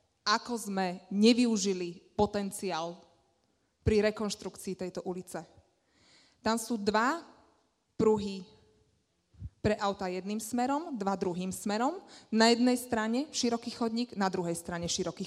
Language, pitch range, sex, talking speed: Slovak, 170-210 Hz, female, 110 wpm